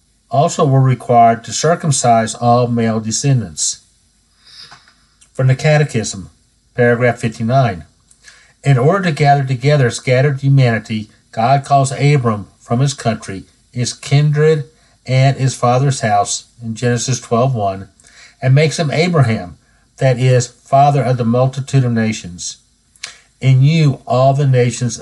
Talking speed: 125 wpm